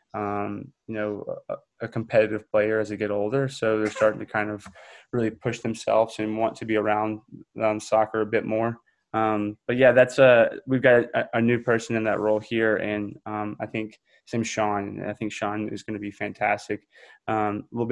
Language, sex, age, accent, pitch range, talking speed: English, male, 20-39, American, 105-115 Hz, 210 wpm